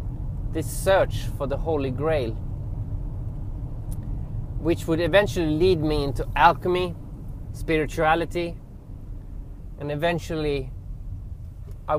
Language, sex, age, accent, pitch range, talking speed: English, male, 20-39, Swedish, 105-155 Hz, 85 wpm